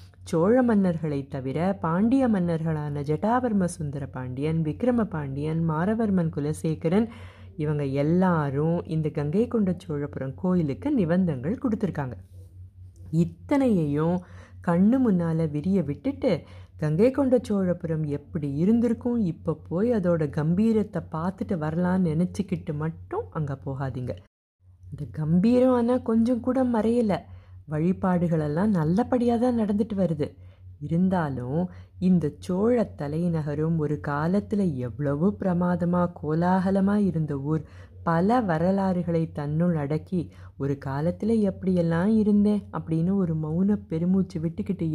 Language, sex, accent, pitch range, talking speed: Tamil, female, native, 145-190 Hz, 95 wpm